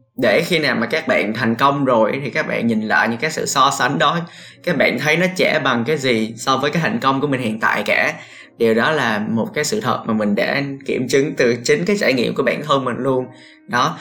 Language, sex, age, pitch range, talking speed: Vietnamese, male, 20-39, 115-165 Hz, 260 wpm